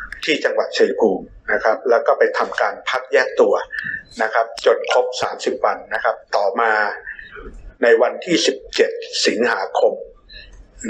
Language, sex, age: Thai, male, 60-79